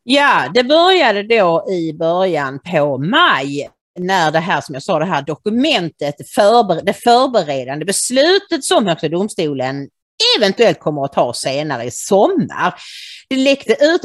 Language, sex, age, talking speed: English, female, 40-59, 130 wpm